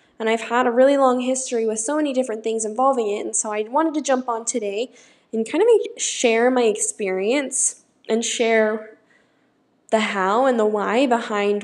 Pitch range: 225-330 Hz